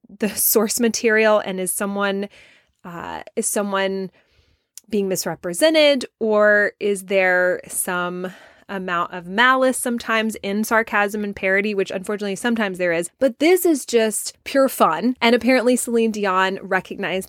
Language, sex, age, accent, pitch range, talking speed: English, female, 20-39, American, 195-250 Hz, 135 wpm